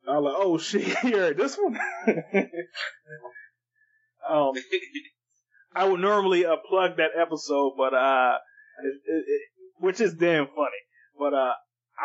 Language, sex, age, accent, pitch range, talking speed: English, male, 20-39, American, 130-175 Hz, 125 wpm